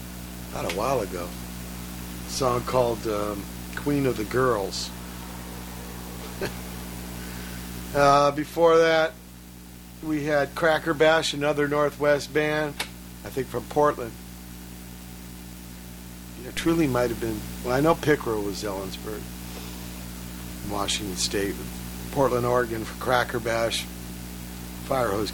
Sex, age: male, 50-69